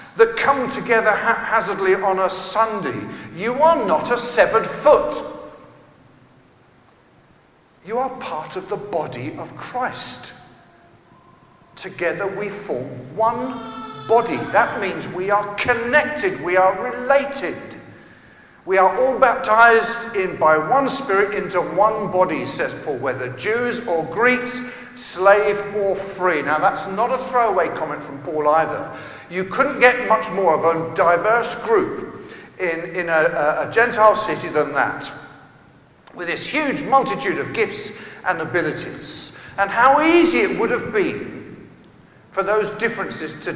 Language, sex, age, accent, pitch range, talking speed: English, male, 50-69, British, 180-245 Hz, 135 wpm